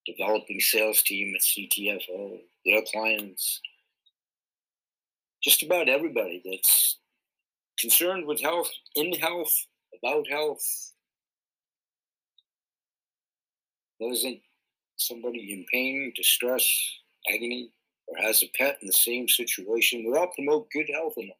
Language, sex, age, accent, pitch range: Chinese, male, 60-79, American, 110-150 Hz